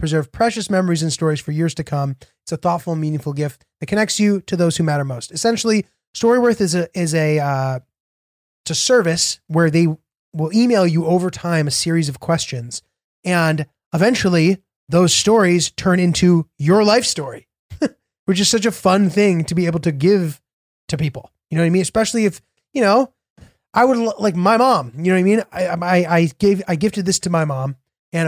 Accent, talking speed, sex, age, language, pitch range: American, 200 wpm, male, 20-39, English, 150-190 Hz